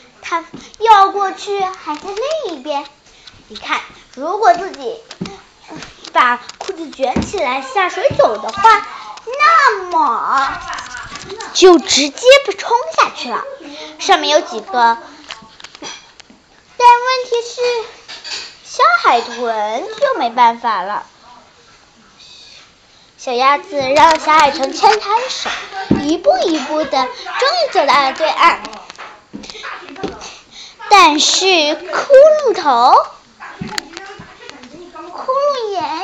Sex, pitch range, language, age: female, 275-415 Hz, Chinese, 10-29